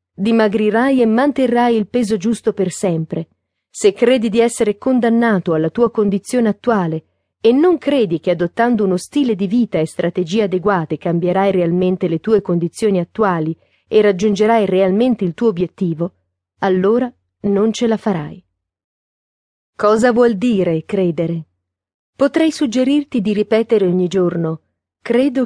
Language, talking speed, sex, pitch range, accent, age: Italian, 135 wpm, female, 170-235 Hz, native, 40-59